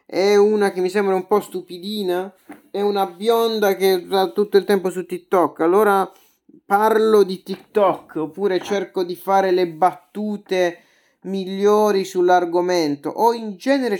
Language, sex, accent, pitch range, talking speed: Italian, male, native, 155-205 Hz, 140 wpm